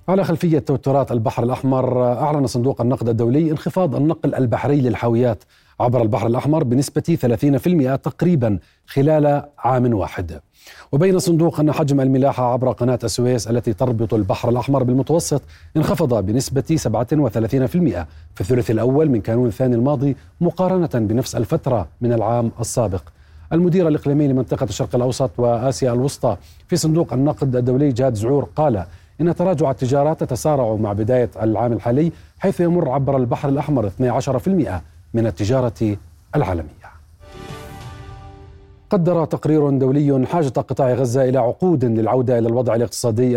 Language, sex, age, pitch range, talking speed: Arabic, male, 40-59, 115-150 Hz, 130 wpm